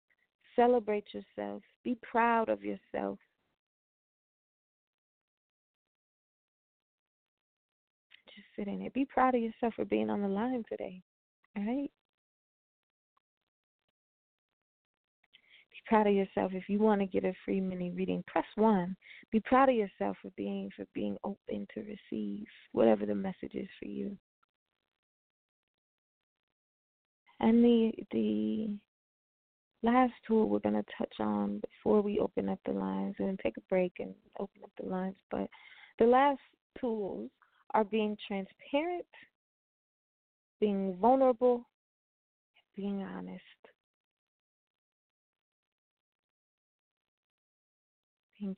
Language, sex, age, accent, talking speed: English, female, 20-39, American, 115 wpm